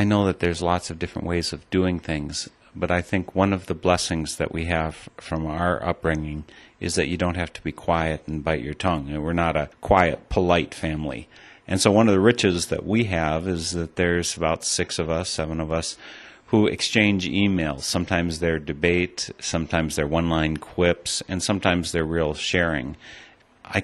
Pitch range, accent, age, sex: 75-90 Hz, American, 40-59, male